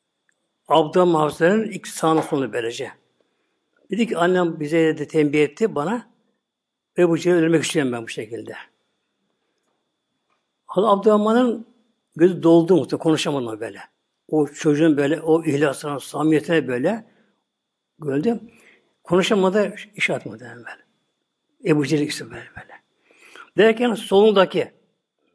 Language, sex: Turkish, male